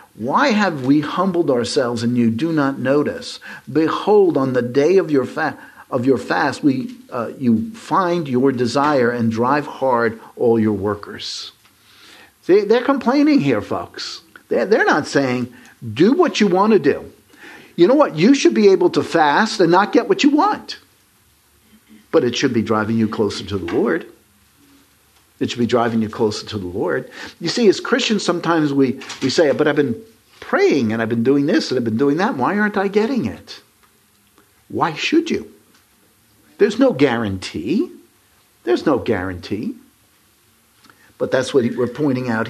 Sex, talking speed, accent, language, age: male, 175 wpm, American, English, 50-69